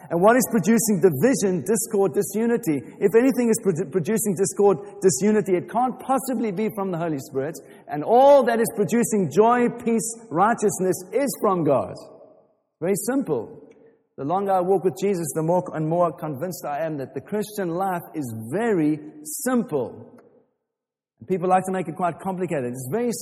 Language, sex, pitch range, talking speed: English, male, 155-210 Hz, 165 wpm